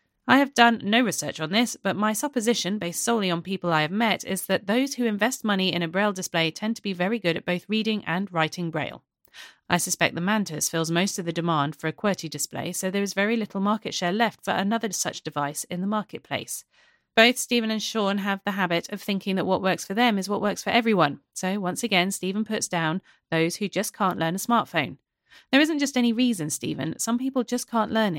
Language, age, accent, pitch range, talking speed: English, 30-49, British, 175-225 Hz, 230 wpm